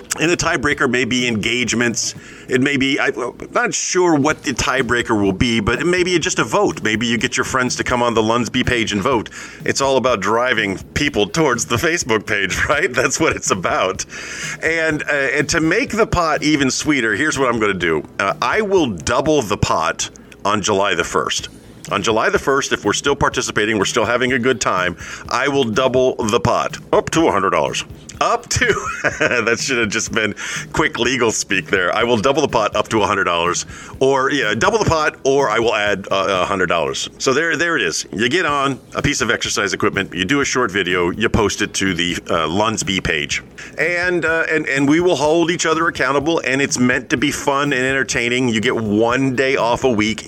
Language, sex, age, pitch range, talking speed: English, male, 40-59, 115-150 Hz, 215 wpm